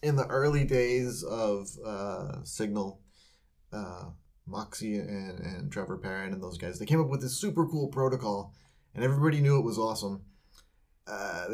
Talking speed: 160 wpm